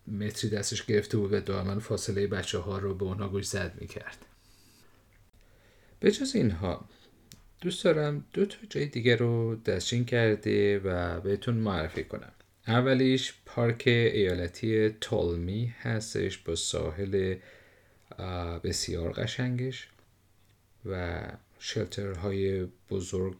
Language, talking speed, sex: Persian, 115 wpm, male